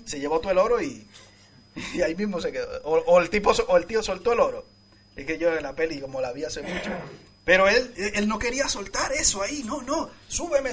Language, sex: Spanish, male